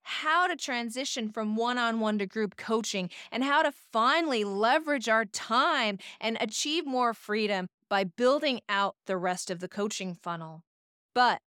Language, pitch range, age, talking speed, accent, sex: English, 190-250 Hz, 30-49, 150 wpm, American, female